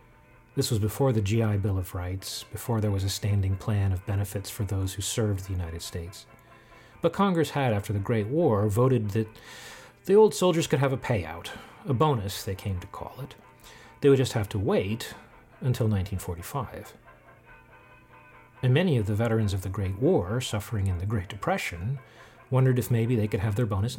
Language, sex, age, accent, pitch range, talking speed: English, male, 40-59, American, 100-125 Hz, 190 wpm